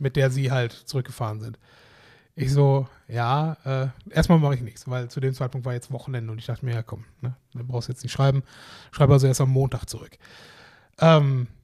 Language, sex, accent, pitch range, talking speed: German, male, German, 130-155 Hz, 205 wpm